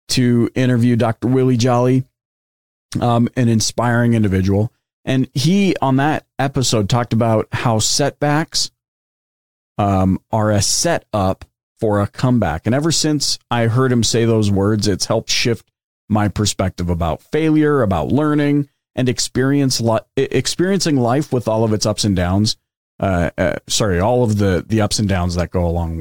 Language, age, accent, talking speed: English, 40-59, American, 160 wpm